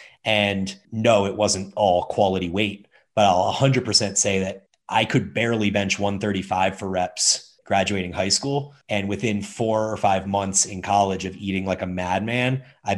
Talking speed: 170 wpm